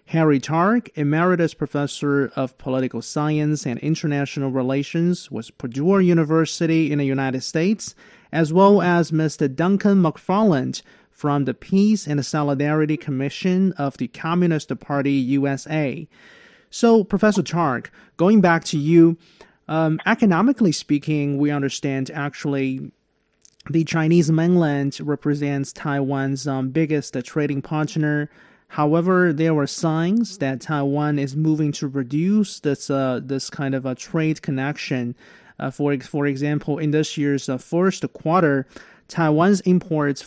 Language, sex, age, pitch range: English, male, 30-49, 140-165 Hz